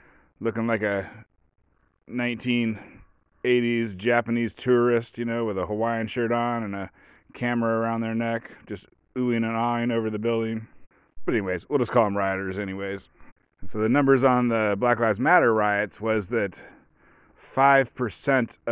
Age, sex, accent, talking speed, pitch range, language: 30-49, male, American, 145 wpm, 95-115 Hz, English